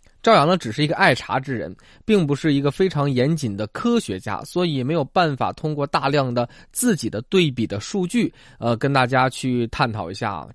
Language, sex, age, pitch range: Chinese, male, 20-39, 125-185 Hz